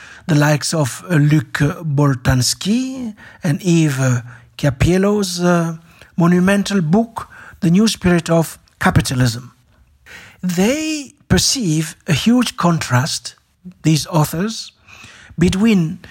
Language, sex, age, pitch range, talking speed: English, male, 60-79, 140-195 Hz, 95 wpm